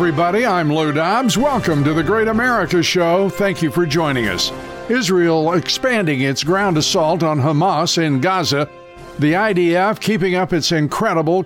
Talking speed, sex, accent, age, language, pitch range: 155 wpm, male, American, 60-79, English, 150-190 Hz